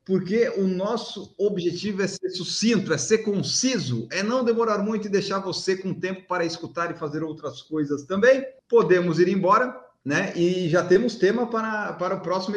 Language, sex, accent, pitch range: Portuguese, male, Brazilian, 145-195 Hz